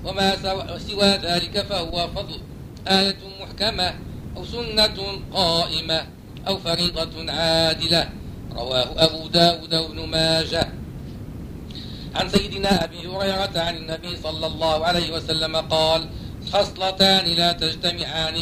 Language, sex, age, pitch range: Arabic, male, 50-69, 160-180 Hz